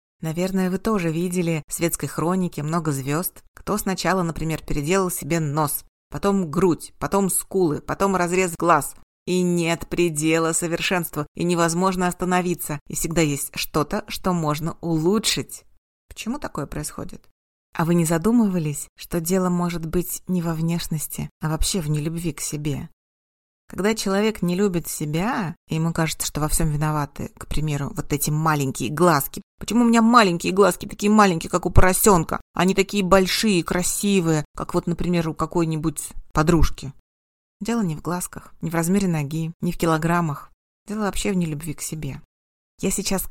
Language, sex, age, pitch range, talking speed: Russian, female, 30-49, 155-185 Hz, 160 wpm